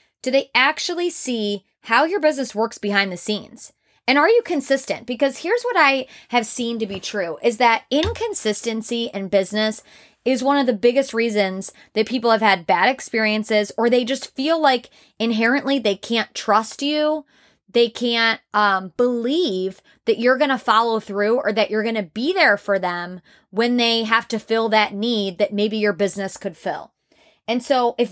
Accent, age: American, 20-39